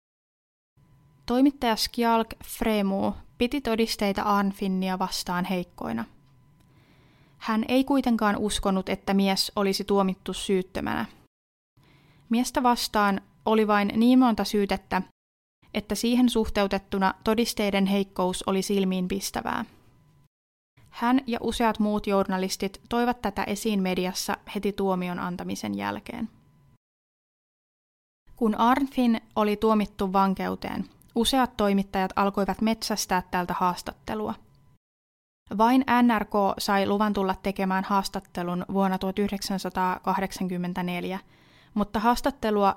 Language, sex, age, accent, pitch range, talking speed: Finnish, female, 20-39, native, 185-225 Hz, 95 wpm